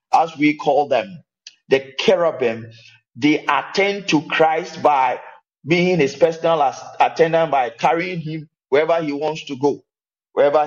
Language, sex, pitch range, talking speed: English, male, 145-180 Hz, 135 wpm